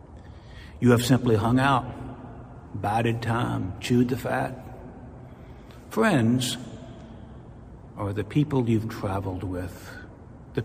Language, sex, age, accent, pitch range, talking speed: English, male, 60-79, American, 105-125 Hz, 100 wpm